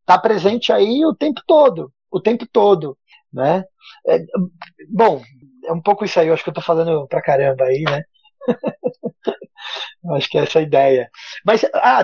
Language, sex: Portuguese, male